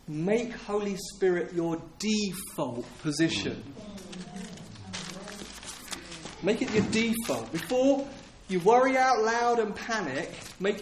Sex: male